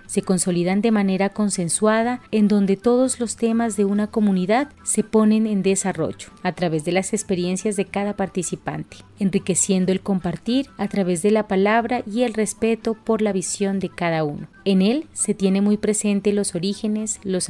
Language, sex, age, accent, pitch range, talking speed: Spanish, female, 30-49, Colombian, 185-225 Hz, 175 wpm